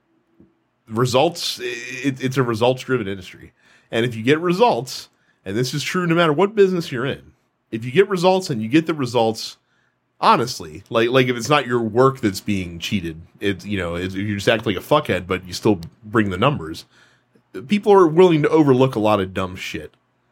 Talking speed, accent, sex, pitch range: 200 wpm, American, male, 100-130 Hz